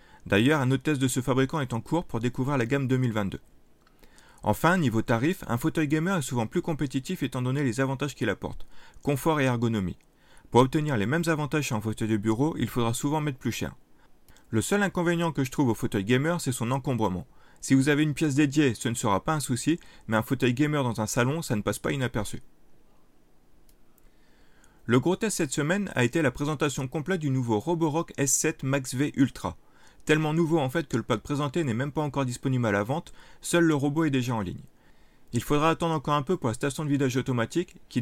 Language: French